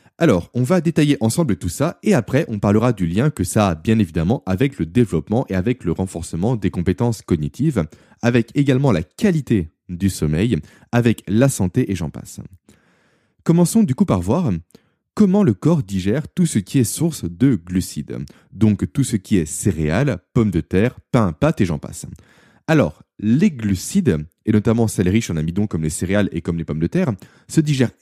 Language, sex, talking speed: French, male, 195 wpm